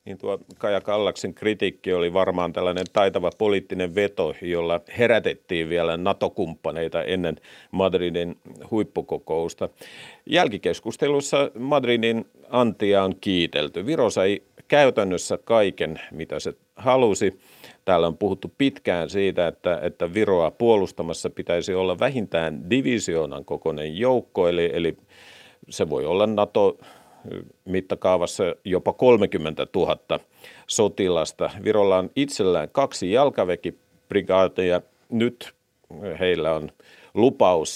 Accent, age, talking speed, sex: native, 50-69, 105 wpm, male